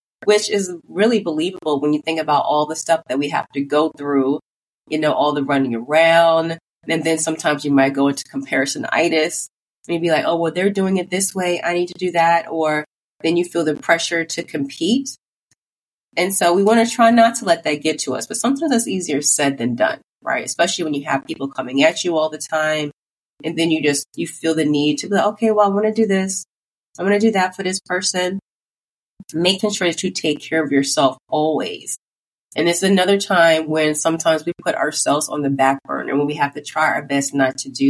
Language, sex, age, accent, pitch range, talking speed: English, female, 30-49, American, 150-185 Hz, 230 wpm